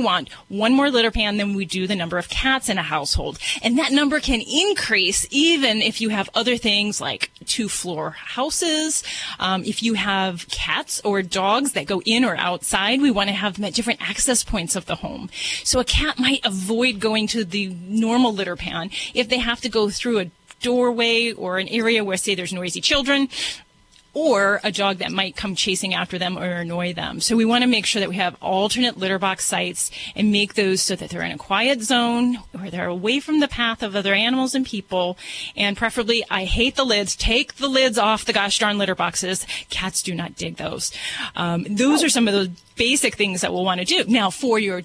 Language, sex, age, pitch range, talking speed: English, female, 30-49, 190-245 Hz, 215 wpm